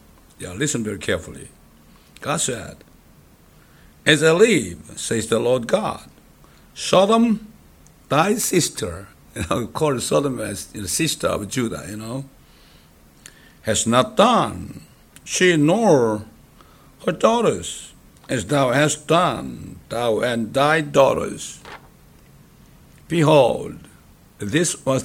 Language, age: English, 60-79